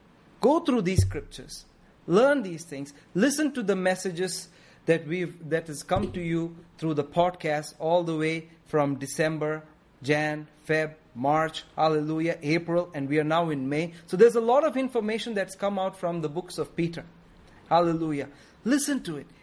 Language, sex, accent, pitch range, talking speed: English, male, Indian, 150-190 Hz, 170 wpm